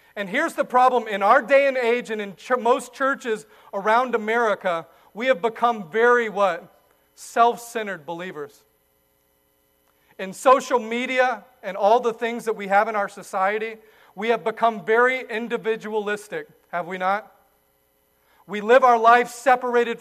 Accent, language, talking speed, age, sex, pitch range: American, English, 145 wpm, 40-59, male, 180-245 Hz